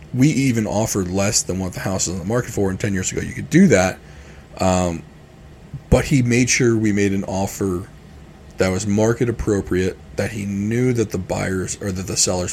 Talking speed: 210 wpm